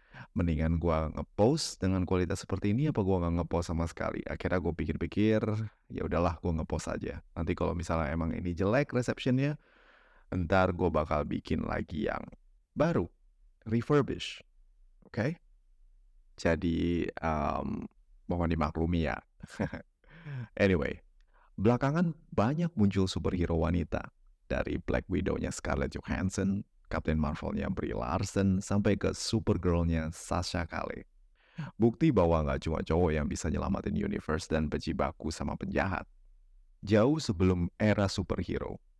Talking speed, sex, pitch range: 125 wpm, male, 80-100 Hz